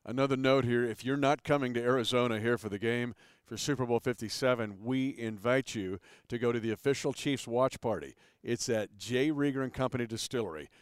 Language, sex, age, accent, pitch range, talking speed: English, male, 50-69, American, 115-140 Hz, 195 wpm